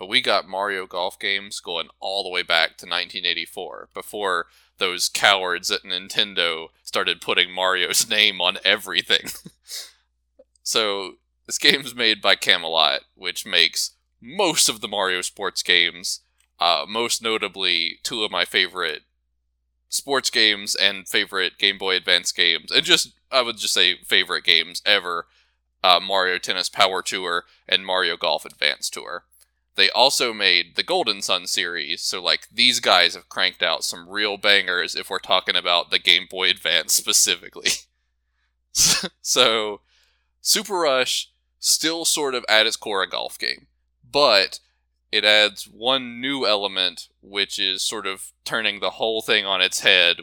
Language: English